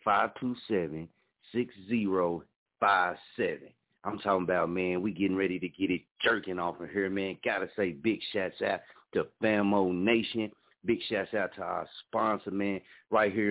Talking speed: 155 wpm